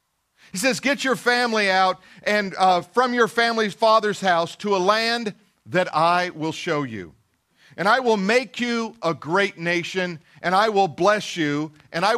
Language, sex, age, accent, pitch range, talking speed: English, male, 50-69, American, 180-230 Hz, 175 wpm